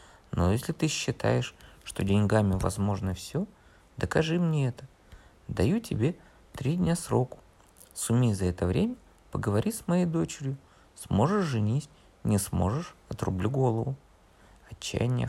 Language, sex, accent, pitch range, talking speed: Russian, male, native, 95-135 Hz, 120 wpm